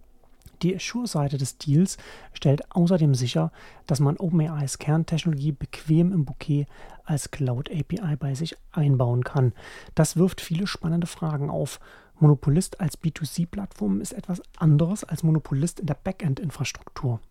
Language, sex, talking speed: German, male, 130 wpm